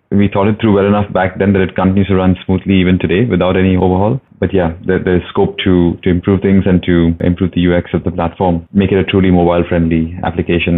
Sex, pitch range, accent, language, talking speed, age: male, 85-95 Hz, Indian, English, 230 wpm, 20-39